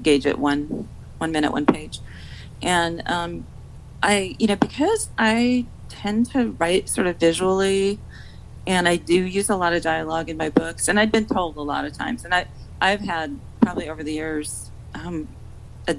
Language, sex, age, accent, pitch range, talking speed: English, female, 40-59, American, 150-190 Hz, 190 wpm